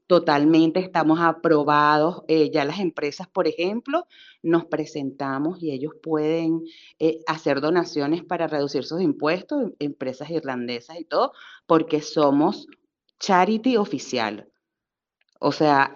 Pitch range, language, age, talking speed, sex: 155-210 Hz, Spanish, 40-59, 115 wpm, female